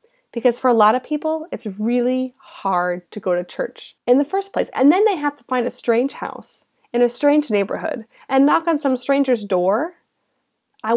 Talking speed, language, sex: 200 wpm, English, female